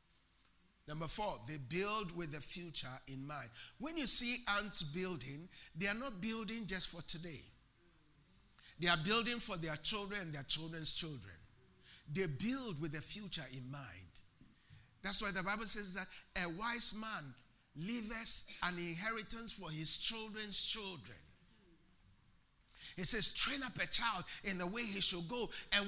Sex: male